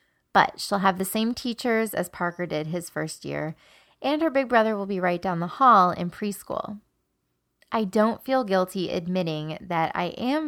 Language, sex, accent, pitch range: English, female, American, 165-210 Hz